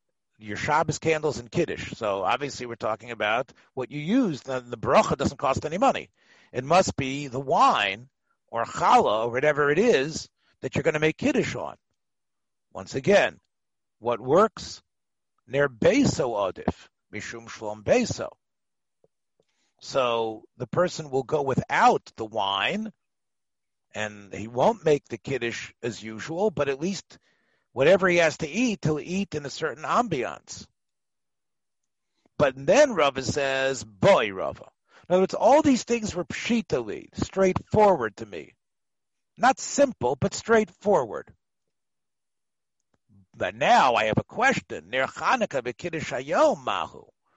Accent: American